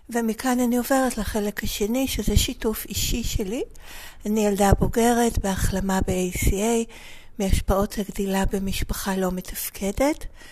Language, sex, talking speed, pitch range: Hebrew, female, 110 wpm, 190-230 Hz